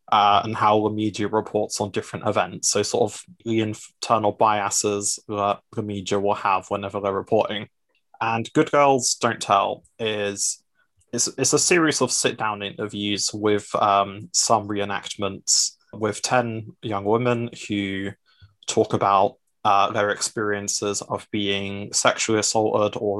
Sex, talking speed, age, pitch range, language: male, 140 wpm, 20-39, 105-125 Hz, English